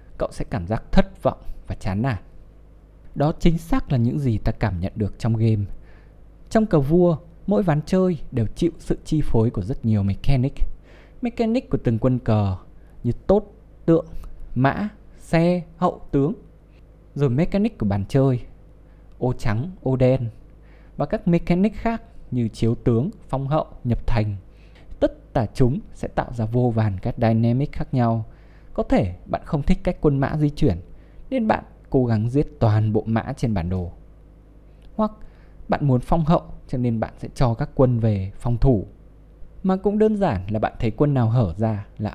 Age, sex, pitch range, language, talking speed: 20-39, male, 105-155 Hz, Vietnamese, 180 wpm